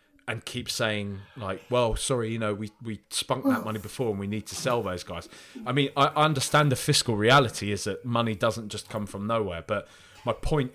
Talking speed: 220 wpm